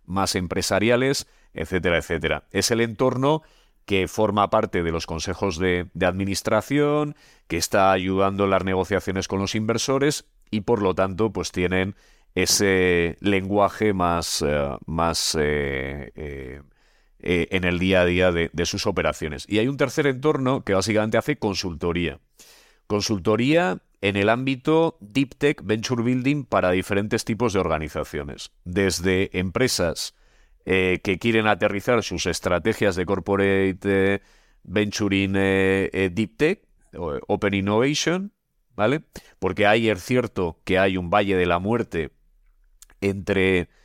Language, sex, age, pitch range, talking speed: Spanish, male, 40-59, 90-115 Hz, 135 wpm